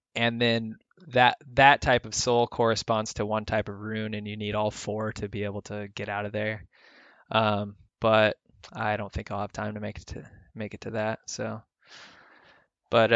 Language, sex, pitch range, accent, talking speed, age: English, male, 110-125 Hz, American, 200 wpm, 20-39